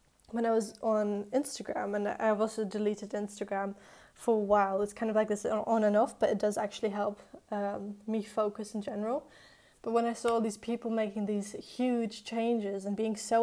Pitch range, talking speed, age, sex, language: 210-230 Hz, 200 wpm, 10-29, female, English